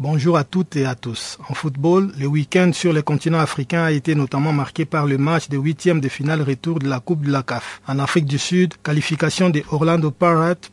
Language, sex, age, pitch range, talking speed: French, male, 50-69, 140-175 Hz, 225 wpm